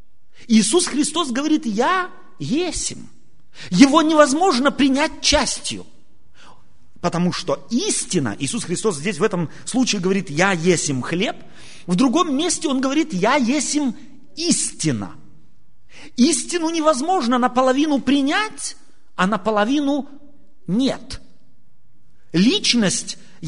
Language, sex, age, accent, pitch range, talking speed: Russian, male, 40-59, native, 225-315 Hz, 95 wpm